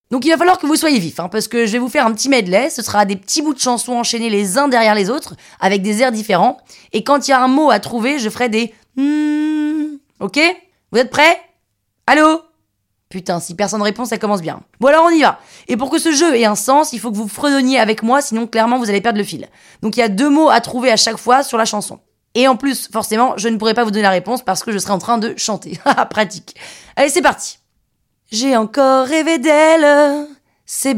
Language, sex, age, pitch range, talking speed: French, female, 20-39, 230-315 Hz, 255 wpm